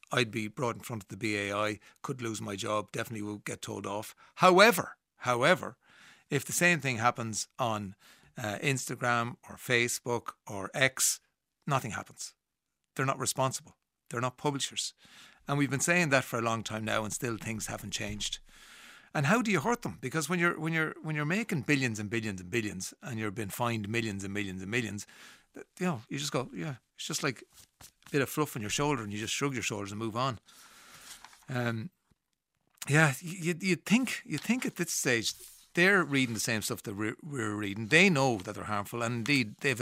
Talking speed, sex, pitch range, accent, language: 200 wpm, male, 110-150 Hz, Irish, English